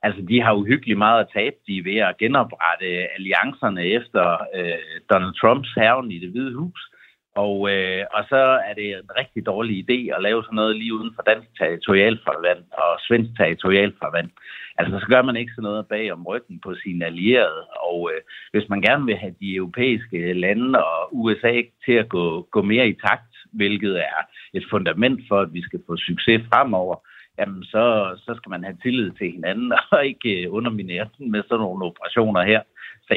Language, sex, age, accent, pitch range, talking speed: Danish, male, 60-79, native, 90-115 Hz, 185 wpm